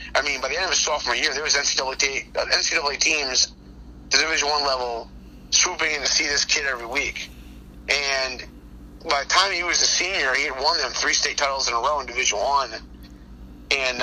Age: 30-49